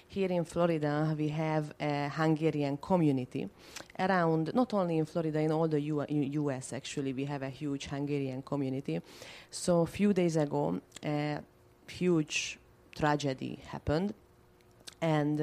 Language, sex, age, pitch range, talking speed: English, female, 30-49, 135-160 Hz, 130 wpm